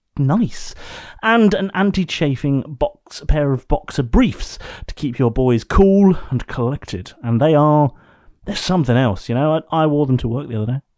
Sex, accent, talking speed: male, British, 185 wpm